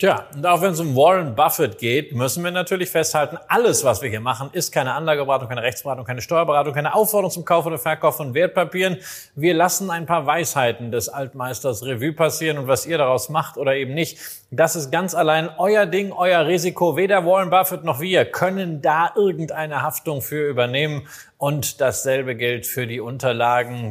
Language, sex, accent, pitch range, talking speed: German, male, German, 135-175 Hz, 190 wpm